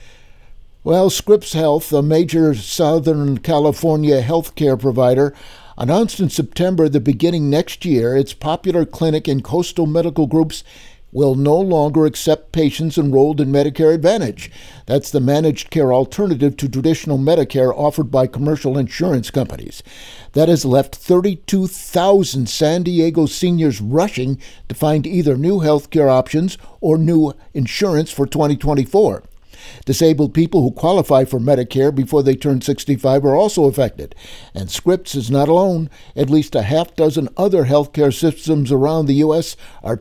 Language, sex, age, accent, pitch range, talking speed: English, male, 50-69, American, 135-160 Hz, 145 wpm